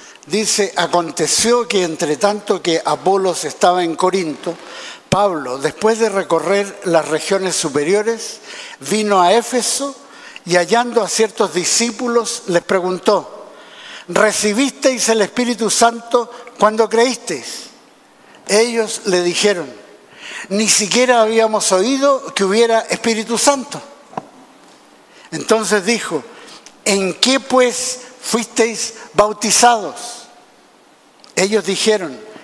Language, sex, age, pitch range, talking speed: Spanish, male, 60-79, 185-230 Hz, 100 wpm